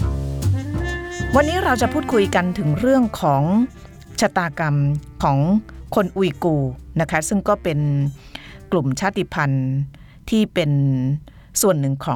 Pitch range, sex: 140-190 Hz, female